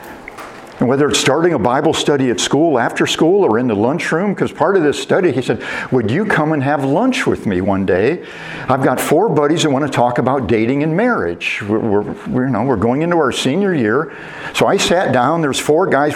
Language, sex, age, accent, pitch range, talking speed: English, male, 50-69, American, 145-220 Hz, 230 wpm